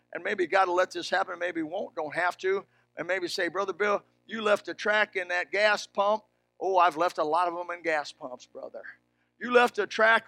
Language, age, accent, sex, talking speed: English, 50-69, American, male, 235 wpm